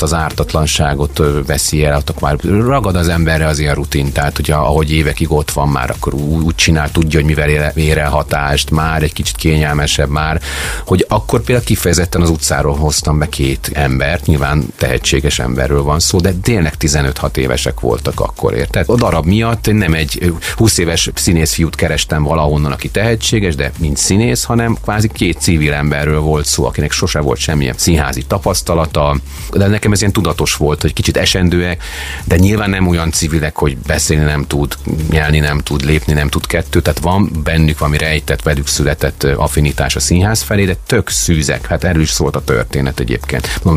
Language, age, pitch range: Hungarian, 40-59, 75-95 Hz